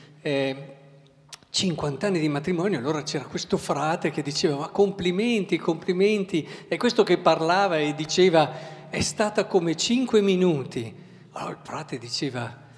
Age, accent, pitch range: 50-69, native, 140-185 Hz